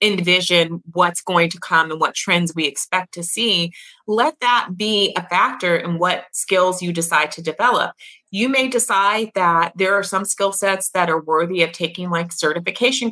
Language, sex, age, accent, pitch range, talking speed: English, female, 30-49, American, 165-195 Hz, 185 wpm